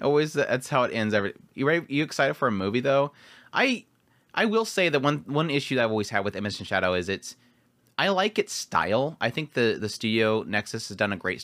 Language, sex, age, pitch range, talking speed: English, male, 30-49, 100-145 Hz, 245 wpm